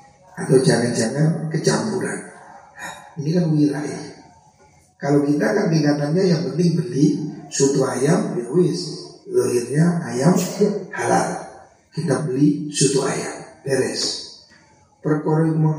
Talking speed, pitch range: 90 wpm, 135-170 Hz